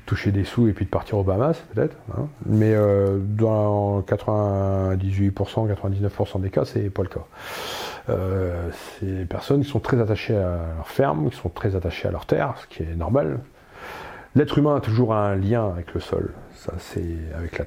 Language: French